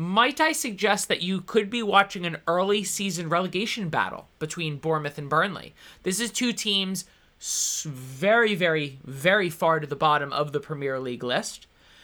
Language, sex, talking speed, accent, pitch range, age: English, male, 160 wpm, American, 120-185 Hz, 20-39